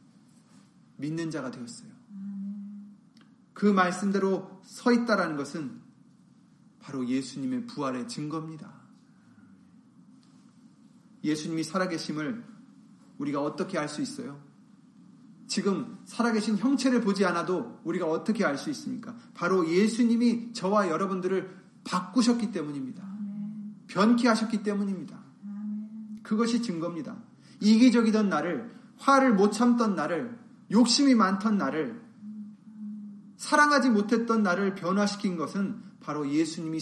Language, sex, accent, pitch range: Korean, male, native, 185-230 Hz